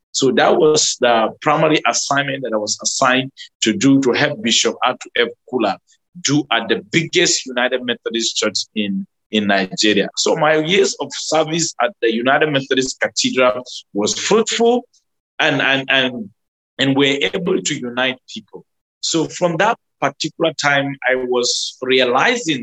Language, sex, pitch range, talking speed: English, male, 125-165 Hz, 150 wpm